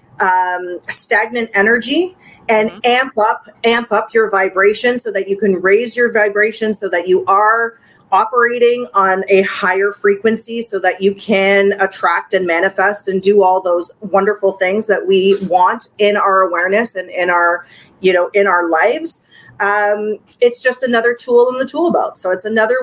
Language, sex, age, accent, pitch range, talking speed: English, female, 30-49, American, 195-230 Hz, 170 wpm